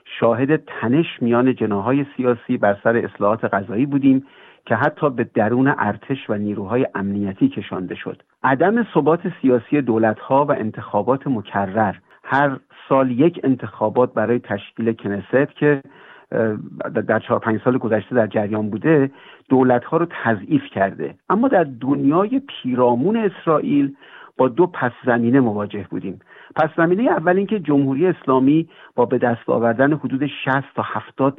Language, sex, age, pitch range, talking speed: Persian, male, 50-69, 115-140 Hz, 140 wpm